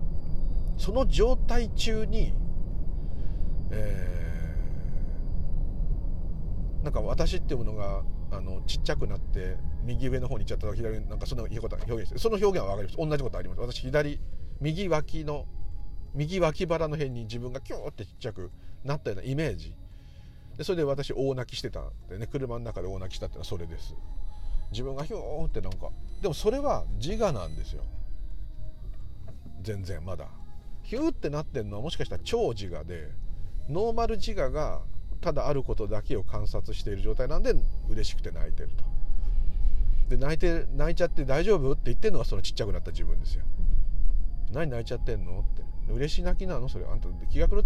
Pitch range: 80-125 Hz